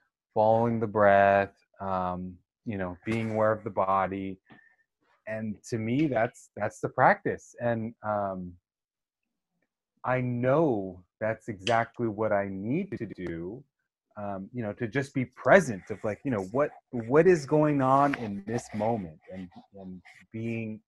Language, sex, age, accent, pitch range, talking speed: English, male, 30-49, American, 95-130 Hz, 145 wpm